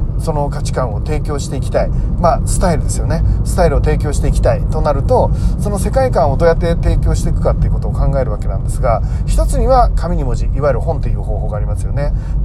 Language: Japanese